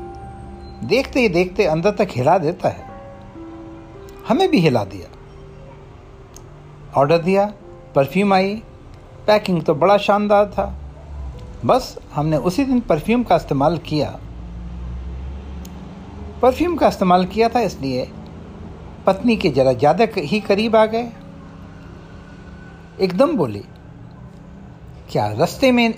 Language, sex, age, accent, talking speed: Hindi, male, 60-79, native, 110 wpm